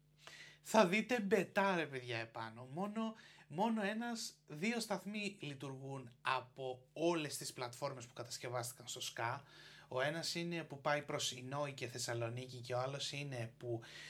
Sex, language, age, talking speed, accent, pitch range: male, Greek, 30-49, 140 wpm, native, 125-155 Hz